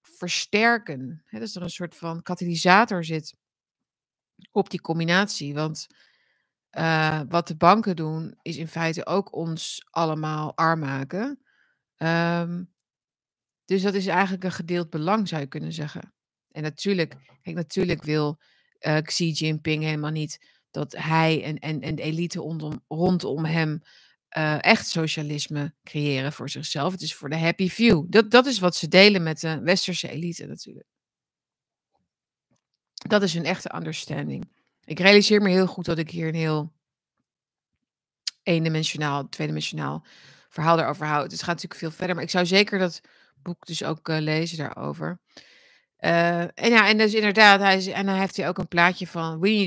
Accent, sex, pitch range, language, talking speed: Dutch, female, 155-185 Hz, Dutch, 160 wpm